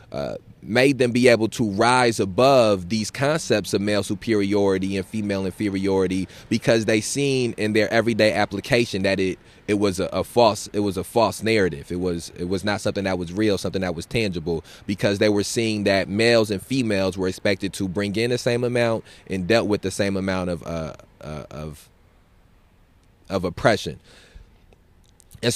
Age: 20-39